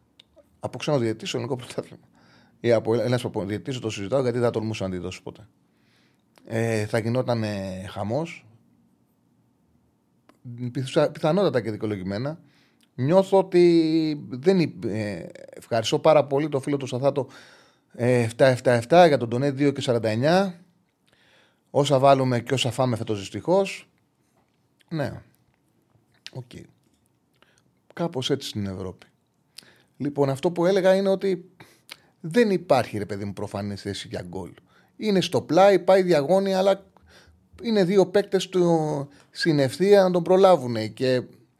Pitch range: 120-195 Hz